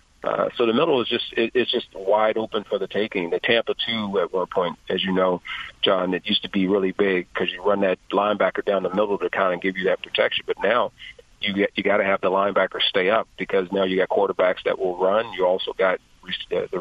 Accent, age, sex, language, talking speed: American, 40-59, male, English, 240 wpm